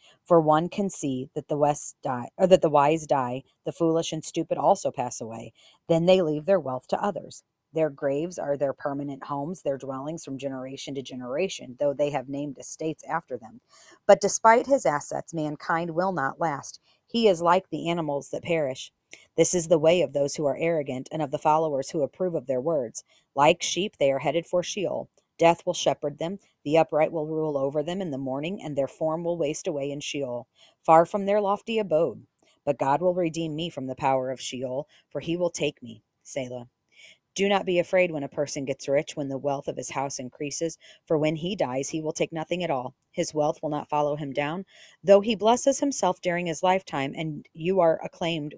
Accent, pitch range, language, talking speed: American, 140-175 Hz, English, 210 wpm